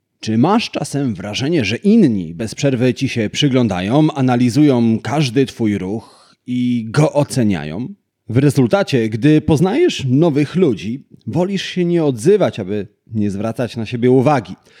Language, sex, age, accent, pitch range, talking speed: Polish, male, 30-49, native, 110-150 Hz, 140 wpm